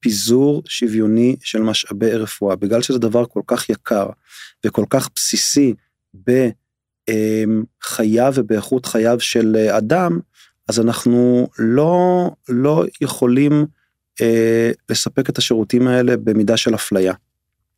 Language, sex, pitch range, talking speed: Hebrew, male, 110-135 Hz, 110 wpm